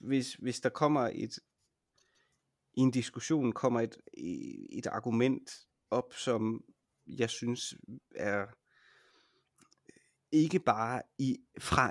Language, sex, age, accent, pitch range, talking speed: Danish, male, 30-49, native, 110-130 Hz, 110 wpm